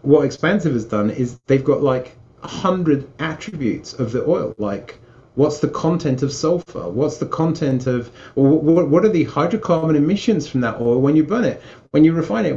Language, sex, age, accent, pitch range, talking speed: English, male, 30-49, British, 125-155 Hz, 195 wpm